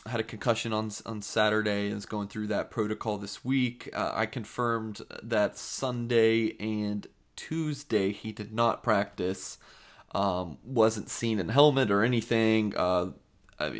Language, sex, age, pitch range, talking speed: English, male, 20-39, 105-120 Hz, 145 wpm